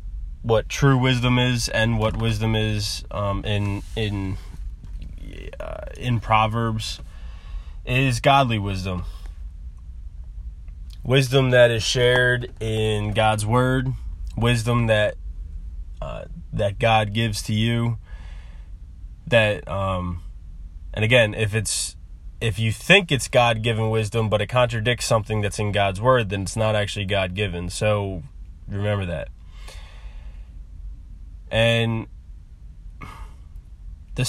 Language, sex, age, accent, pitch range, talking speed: English, male, 20-39, American, 80-115 Hz, 110 wpm